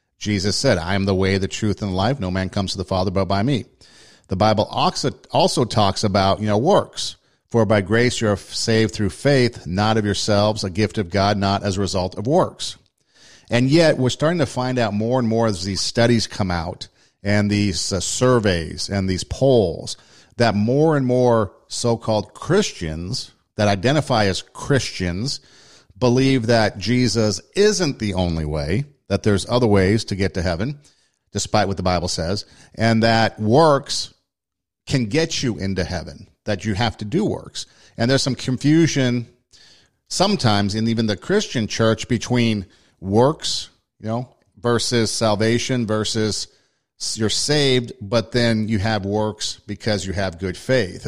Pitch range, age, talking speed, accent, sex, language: 100-125 Hz, 50-69, 170 wpm, American, male, English